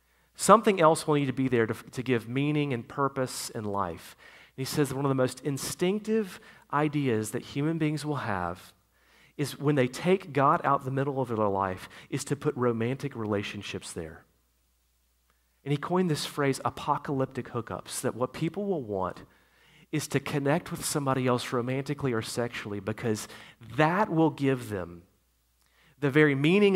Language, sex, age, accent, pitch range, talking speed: English, male, 40-59, American, 110-150 Hz, 165 wpm